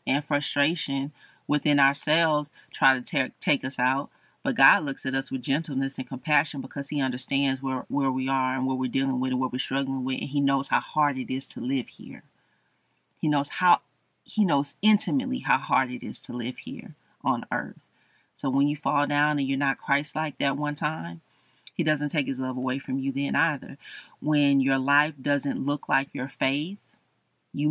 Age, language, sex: 30-49, English, female